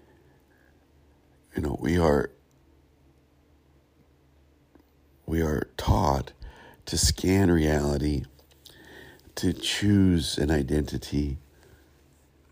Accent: American